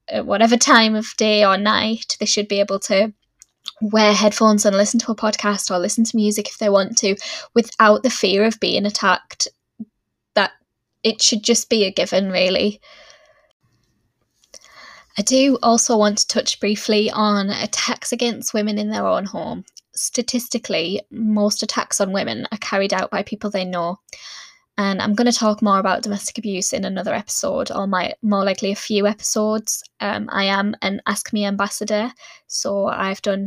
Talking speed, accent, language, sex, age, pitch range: 175 wpm, British, English, female, 10-29, 200-230 Hz